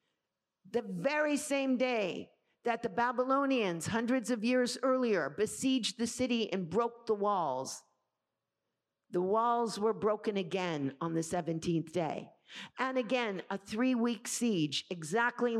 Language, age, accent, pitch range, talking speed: English, 50-69, American, 190-250 Hz, 125 wpm